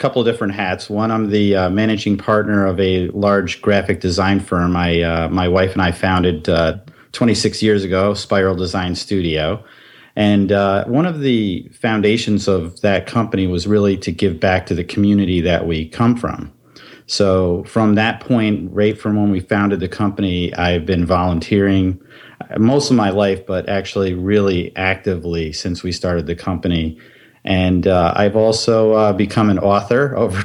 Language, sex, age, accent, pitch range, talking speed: English, male, 40-59, American, 90-105 Hz, 170 wpm